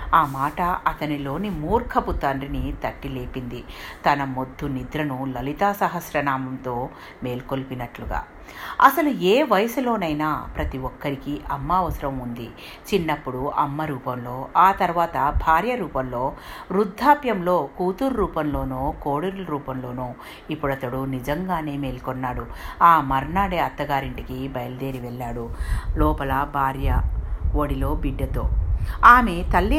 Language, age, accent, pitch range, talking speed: Telugu, 50-69, native, 130-185 Hz, 95 wpm